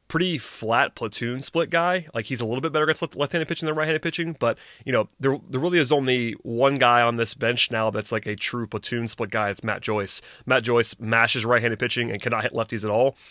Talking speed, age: 250 wpm, 30-49